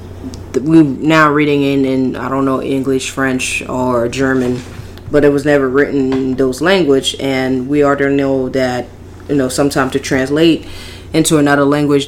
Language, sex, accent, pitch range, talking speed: English, female, American, 125-140 Hz, 165 wpm